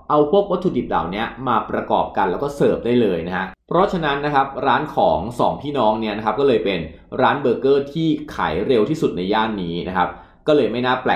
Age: 20-39